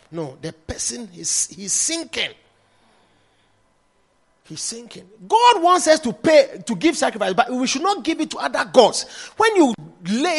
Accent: Nigerian